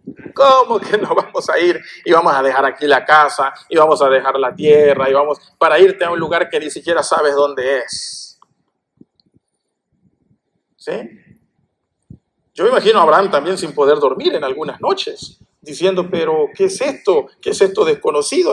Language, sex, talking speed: Spanish, male, 175 wpm